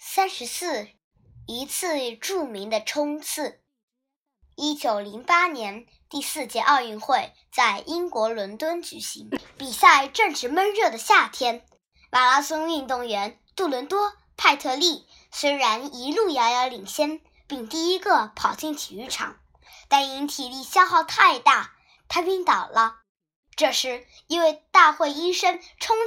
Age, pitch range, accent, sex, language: 10-29, 235-335 Hz, native, male, Chinese